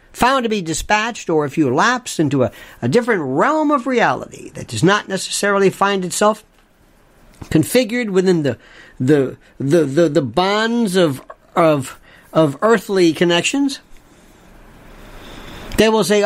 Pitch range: 155-225 Hz